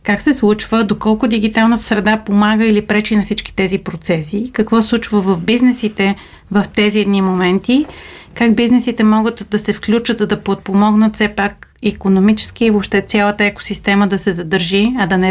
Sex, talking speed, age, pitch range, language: female, 170 wpm, 30-49, 195-225 Hz, Bulgarian